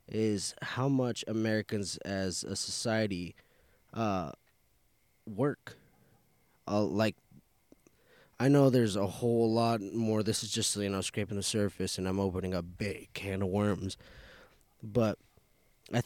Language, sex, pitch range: English, male, 95-115 Hz